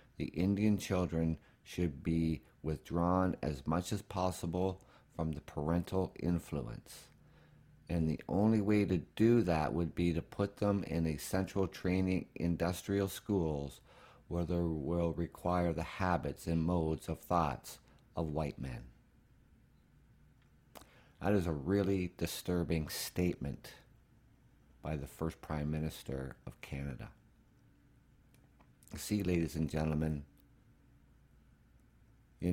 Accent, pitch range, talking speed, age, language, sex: American, 75-95 Hz, 115 wpm, 50-69, English, male